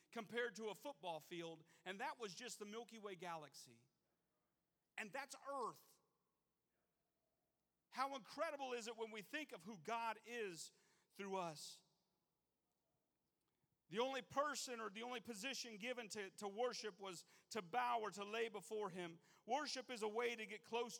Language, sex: English, male